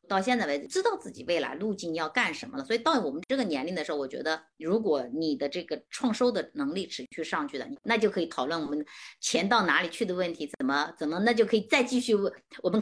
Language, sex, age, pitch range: Chinese, female, 30-49, 175-265 Hz